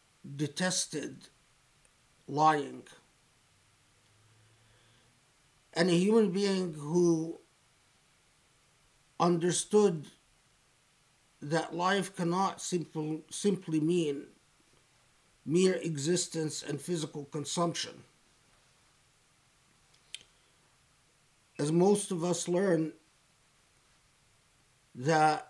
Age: 50-69